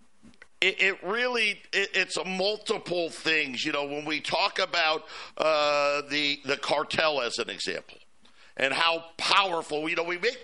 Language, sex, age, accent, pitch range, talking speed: English, male, 50-69, American, 170-220 Hz, 150 wpm